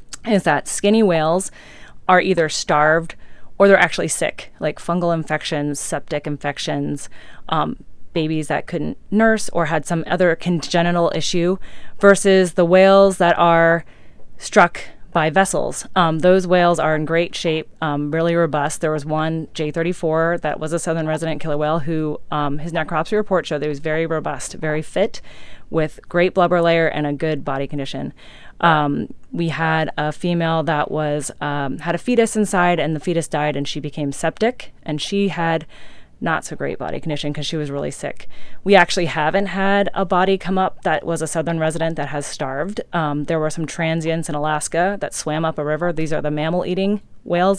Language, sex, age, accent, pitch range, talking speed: English, female, 30-49, American, 155-175 Hz, 185 wpm